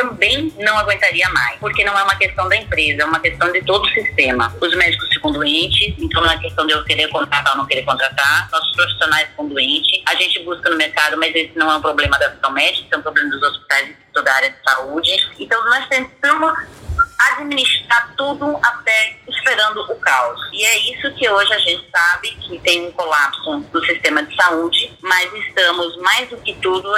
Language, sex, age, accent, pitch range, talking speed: Portuguese, female, 20-39, Brazilian, 165-230 Hz, 210 wpm